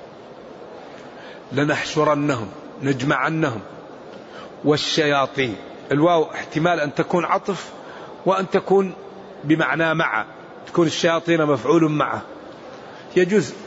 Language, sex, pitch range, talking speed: Arabic, male, 160-195 Hz, 75 wpm